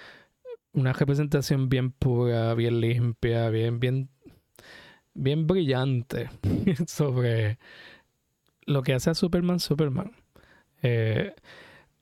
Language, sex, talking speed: Spanish, male, 90 wpm